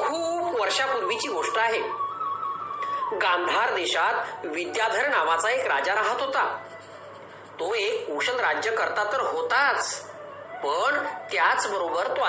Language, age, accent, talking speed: Marathi, 40-59, native, 85 wpm